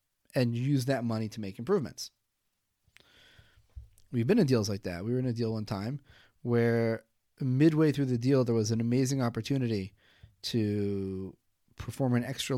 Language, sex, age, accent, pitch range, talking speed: English, male, 30-49, American, 110-130 Hz, 160 wpm